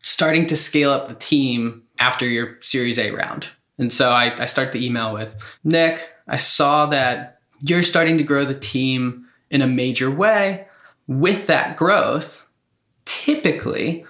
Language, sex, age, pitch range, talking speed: English, male, 20-39, 125-165 Hz, 160 wpm